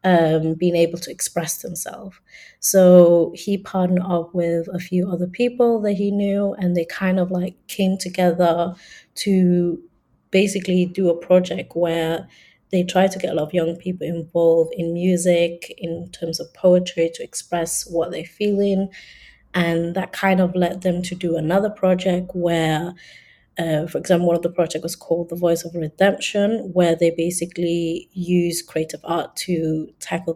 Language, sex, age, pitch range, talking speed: English, female, 30-49, 170-190 Hz, 165 wpm